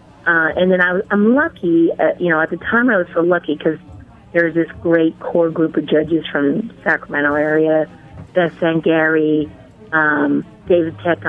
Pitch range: 160-190 Hz